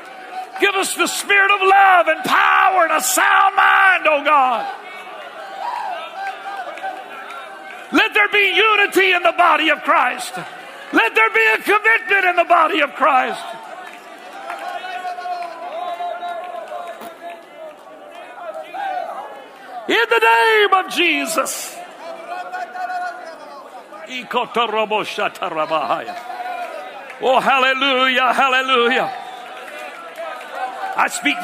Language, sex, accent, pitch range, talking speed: English, male, American, 285-365 Hz, 85 wpm